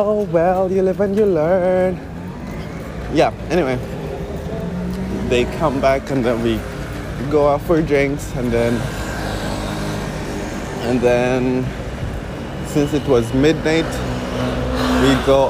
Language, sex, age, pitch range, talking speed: English, male, 20-39, 100-140 Hz, 110 wpm